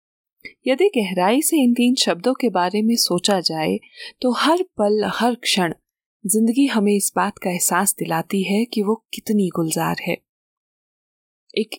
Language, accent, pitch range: Hindi, native, 180-245 Hz